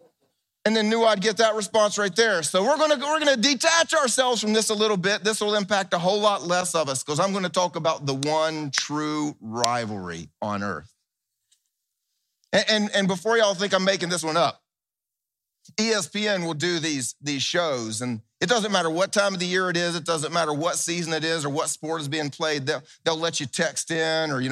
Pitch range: 155-220 Hz